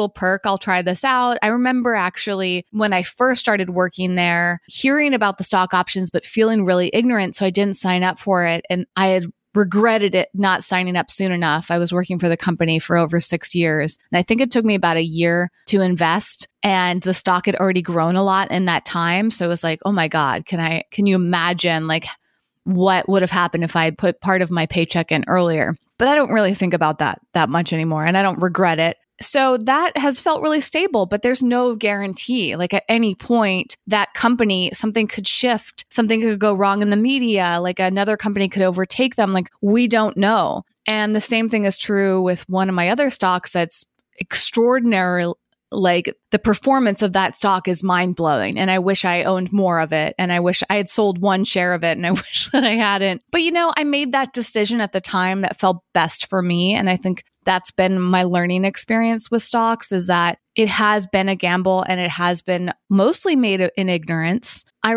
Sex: female